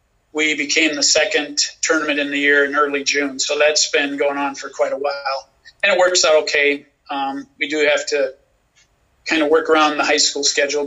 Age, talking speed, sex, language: 40-59, 210 wpm, male, English